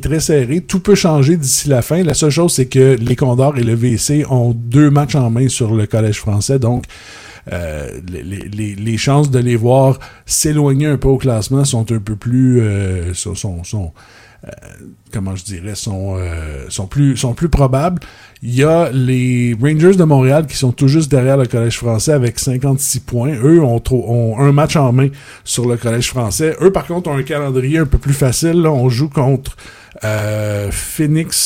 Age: 50-69